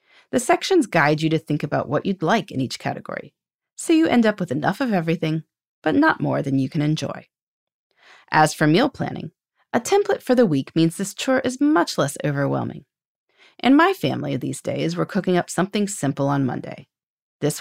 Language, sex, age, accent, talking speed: English, female, 30-49, American, 195 wpm